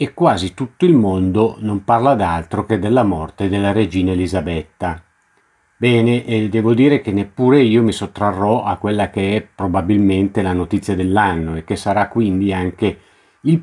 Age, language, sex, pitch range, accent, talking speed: 50-69, Italian, male, 90-120 Hz, native, 165 wpm